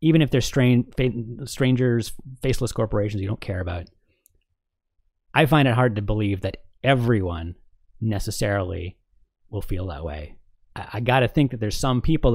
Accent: American